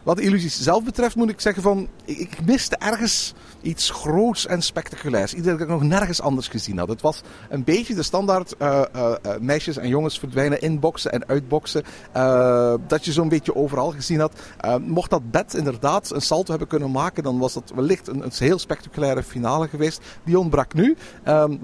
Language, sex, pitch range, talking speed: Dutch, male, 135-180 Hz, 195 wpm